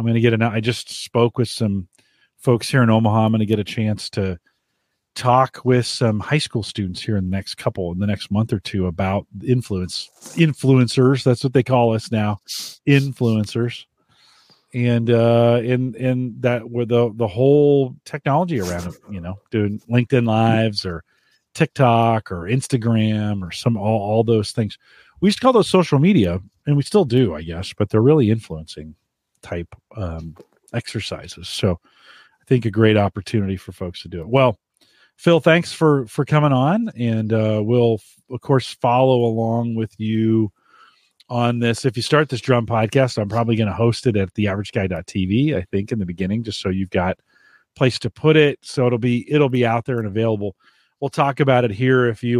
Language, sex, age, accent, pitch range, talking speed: English, male, 40-59, American, 105-125 Hz, 190 wpm